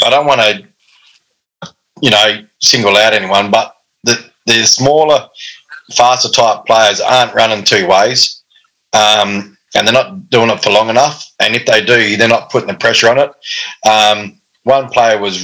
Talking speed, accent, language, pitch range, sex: 170 wpm, Australian, English, 100-130 Hz, male